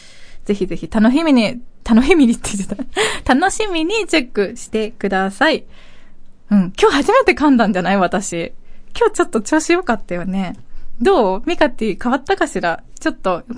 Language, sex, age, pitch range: Japanese, female, 20-39, 195-265 Hz